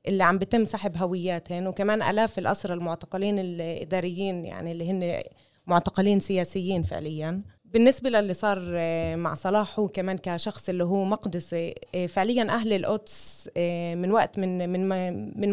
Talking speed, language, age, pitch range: 125 wpm, Arabic, 20-39, 175-215 Hz